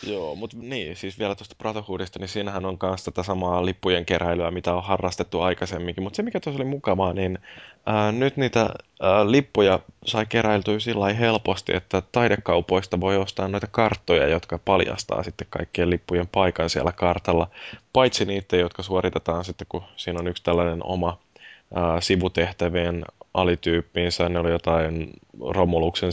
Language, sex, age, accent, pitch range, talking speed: Finnish, male, 20-39, native, 85-100 Hz, 155 wpm